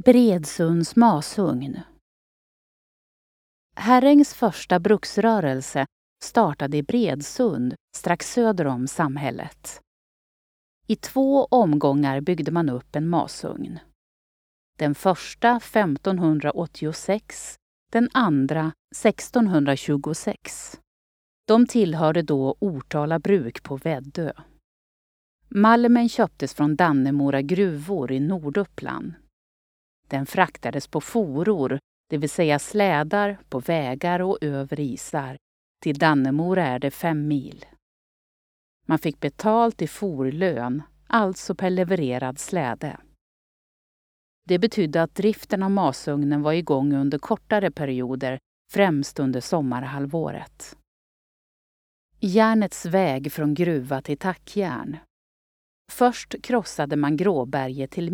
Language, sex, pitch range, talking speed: Swedish, female, 140-200 Hz, 95 wpm